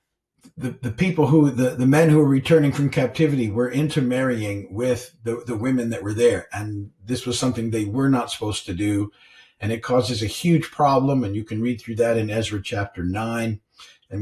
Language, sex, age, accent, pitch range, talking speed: English, male, 50-69, American, 105-130 Hz, 205 wpm